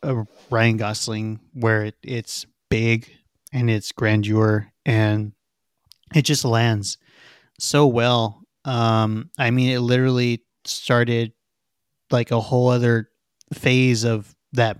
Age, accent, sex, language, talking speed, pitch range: 30-49, American, male, English, 120 wpm, 110-130 Hz